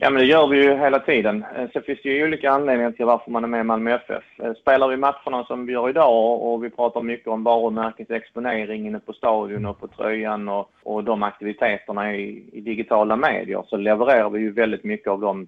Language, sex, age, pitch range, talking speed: Swedish, male, 20-39, 105-120 Hz, 215 wpm